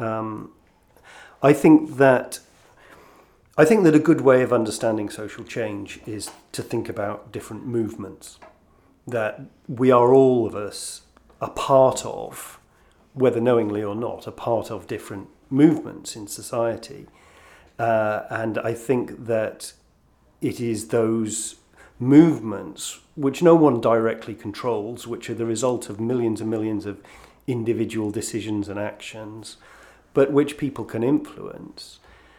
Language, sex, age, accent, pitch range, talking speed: English, male, 40-59, British, 105-125 Hz, 135 wpm